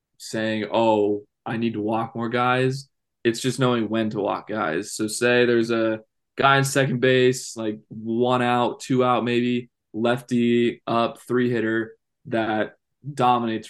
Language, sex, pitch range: English, male, 110-130 Hz